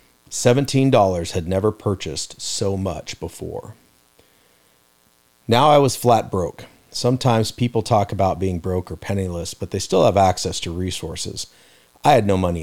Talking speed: 145 wpm